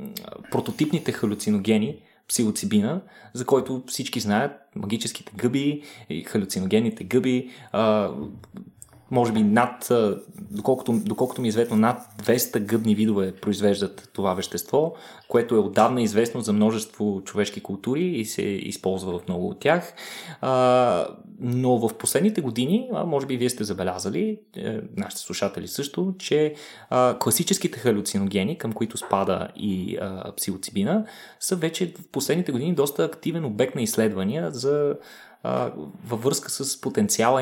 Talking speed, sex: 120 wpm, male